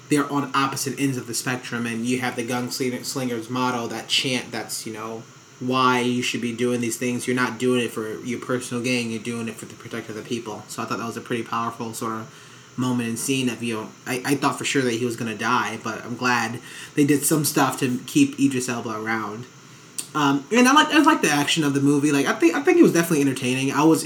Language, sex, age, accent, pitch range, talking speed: English, male, 30-49, American, 120-145 Hz, 255 wpm